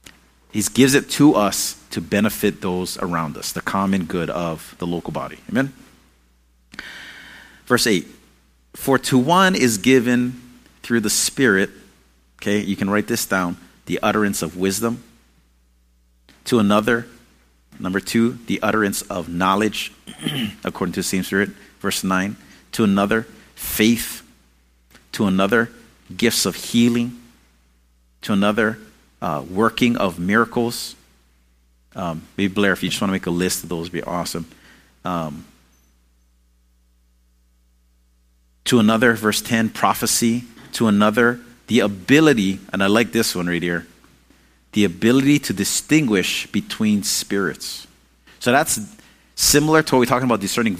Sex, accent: male, American